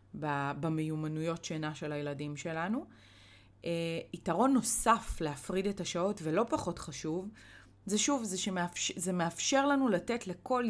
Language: Hebrew